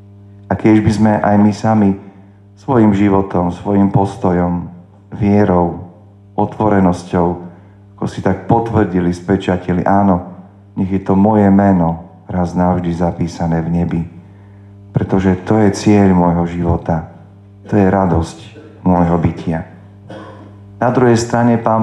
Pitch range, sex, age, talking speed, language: 90-100 Hz, male, 40-59, 120 wpm, Slovak